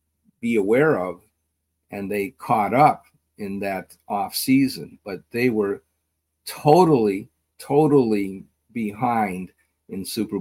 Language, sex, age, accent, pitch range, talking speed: English, male, 50-69, American, 95-125 Hz, 110 wpm